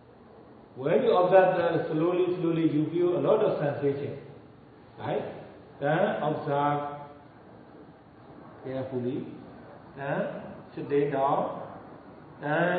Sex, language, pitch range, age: male, Vietnamese, 145-180 Hz, 50-69